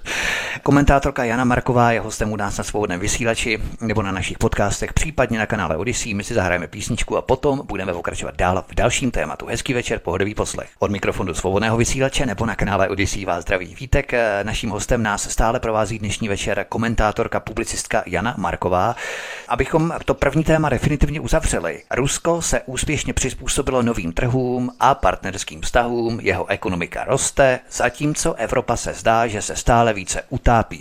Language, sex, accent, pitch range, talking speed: Czech, male, native, 100-125 Hz, 160 wpm